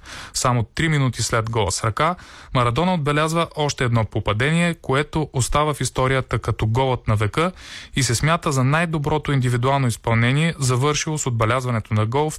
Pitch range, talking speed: 115-145 Hz, 160 wpm